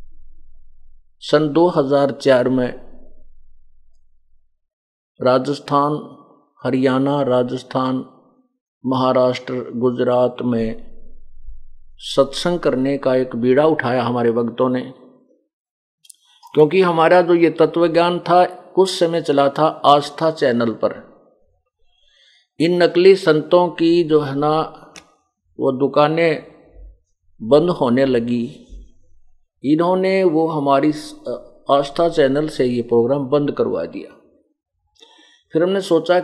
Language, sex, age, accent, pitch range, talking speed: Hindi, male, 50-69, native, 125-170 Hz, 95 wpm